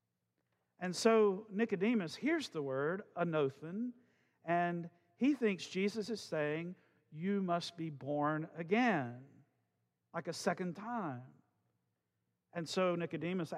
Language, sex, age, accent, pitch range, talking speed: English, male, 50-69, American, 135-195 Hz, 110 wpm